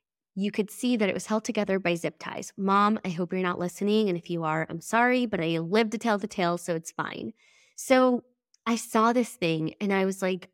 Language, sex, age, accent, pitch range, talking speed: English, female, 20-39, American, 180-240 Hz, 240 wpm